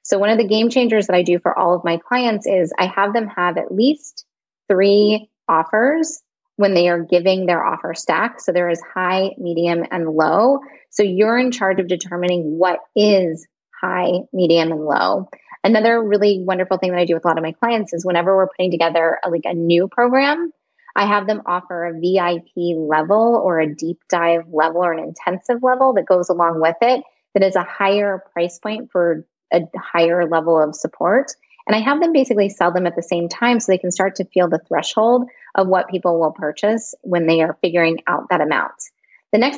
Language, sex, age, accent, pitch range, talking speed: English, female, 20-39, American, 170-210 Hz, 210 wpm